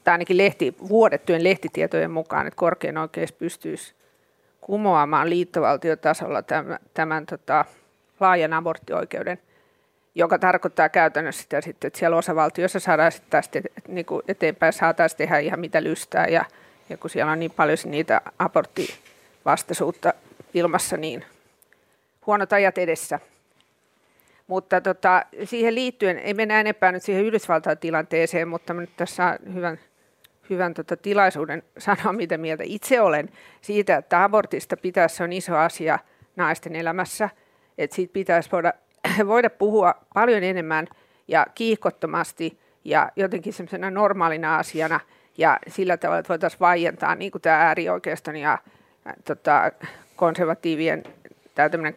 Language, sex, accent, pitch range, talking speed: Finnish, female, native, 160-190 Hz, 125 wpm